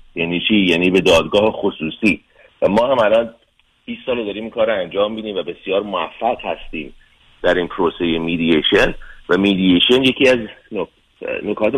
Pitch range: 90-120 Hz